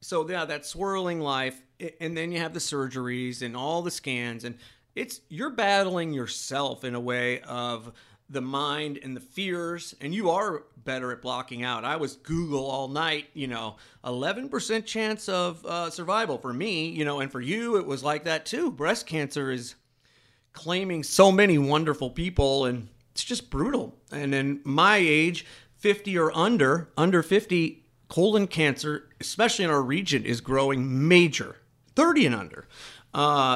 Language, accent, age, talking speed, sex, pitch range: English, American, 40-59, 170 wpm, male, 125-170 Hz